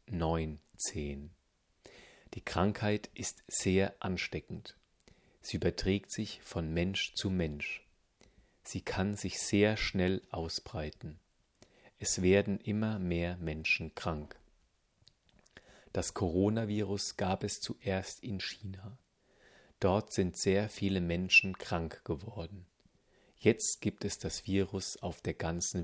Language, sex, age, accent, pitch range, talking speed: German, male, 40-59, German, 85-100 Hz, 110 wpm